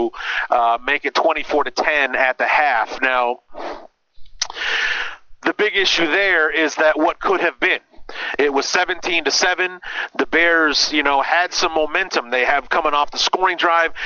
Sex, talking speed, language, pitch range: male, 165 wpm, English, 135-165 Hz